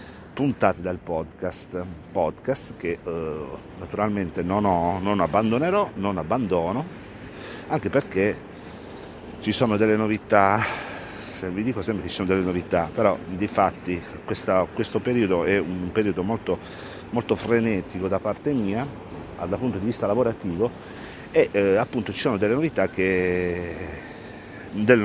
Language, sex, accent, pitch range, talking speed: Italian, male, native, 90-110 Hz, 135 wpm